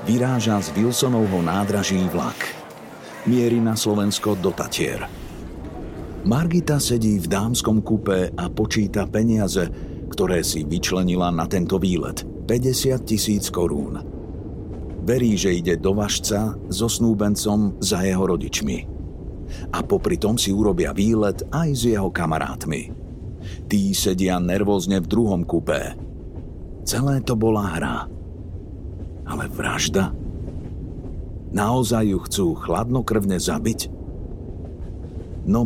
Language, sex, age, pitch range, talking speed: Slovak, male, 50-69, 90-115 Hz, 110 wpm